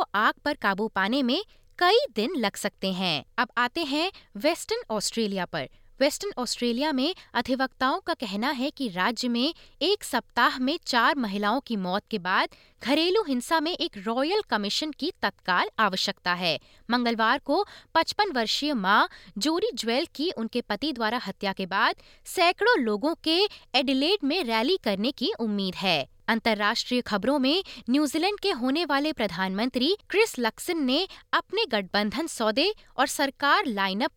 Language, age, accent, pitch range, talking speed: Hindi, 20-39, native, 210-320 Hz, 150 wpm